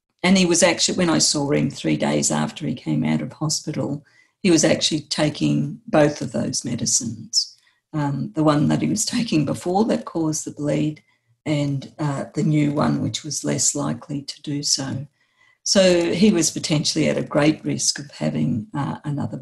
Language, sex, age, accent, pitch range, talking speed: English, female, 50-69, Australian, 135-180 Hz, 185 wpm